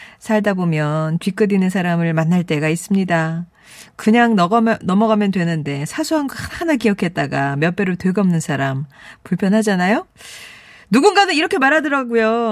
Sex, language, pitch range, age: female, Korean, 195-290 Hz, 40-59